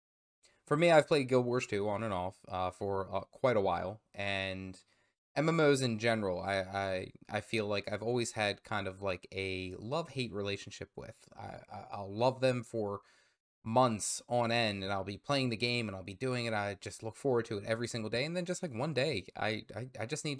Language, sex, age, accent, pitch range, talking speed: English, male, 20-39, American, 100-130 Hz, 225 wpm